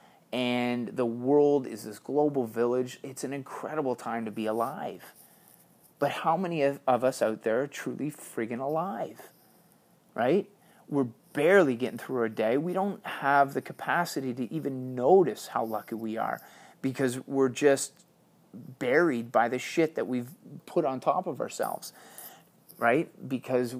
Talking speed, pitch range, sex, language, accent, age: 155 wpm, 115-140 Hz, male, English, American, 30-49